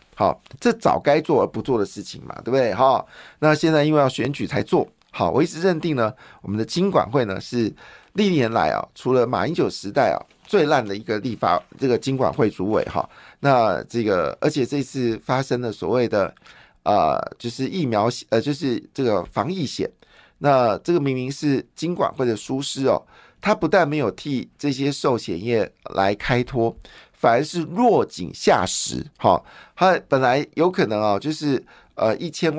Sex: male